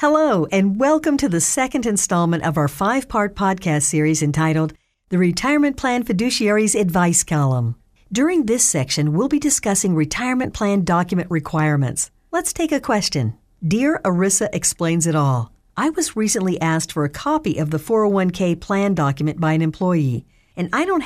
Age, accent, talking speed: 50-69, American, 160 wpm